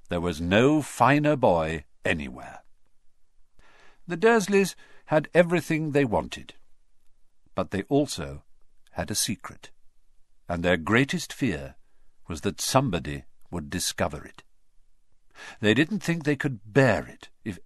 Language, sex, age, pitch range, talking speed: English, male, 50-69, 95-145 Hz, 120 wpm